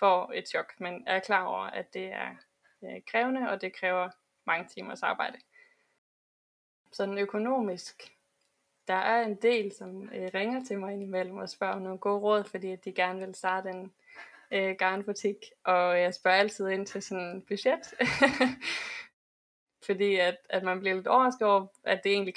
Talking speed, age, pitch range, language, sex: 165 wpm, 20-39, 185-205 Hz, Danish, female